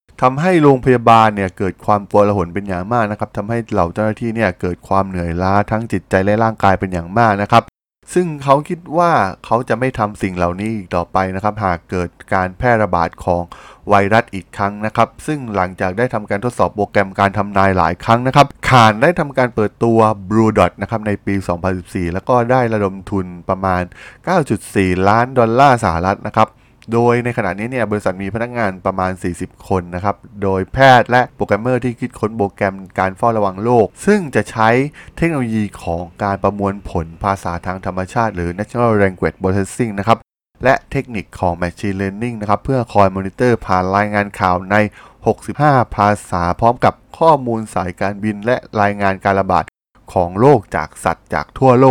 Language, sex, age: Thai, male, 20-39